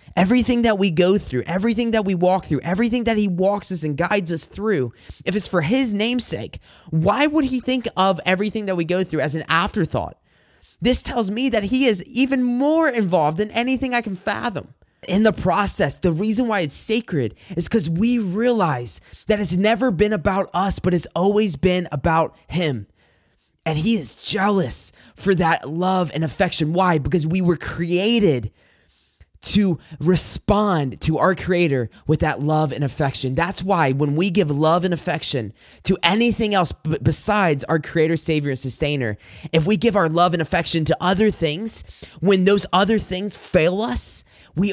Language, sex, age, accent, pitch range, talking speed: English, male, 20-39, American, 155-205 Hz, 180 wpm